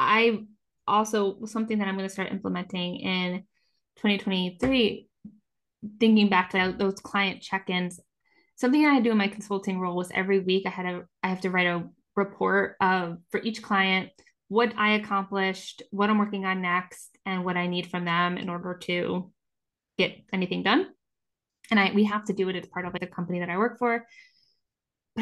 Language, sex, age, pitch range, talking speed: English, female, 20-39, 185-220 Hz, 185 wpm